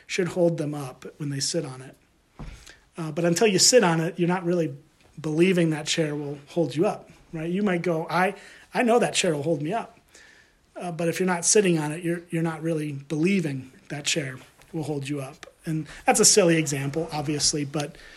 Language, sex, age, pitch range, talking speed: English, male, 30-49, 150-180 Hz, 215 wpm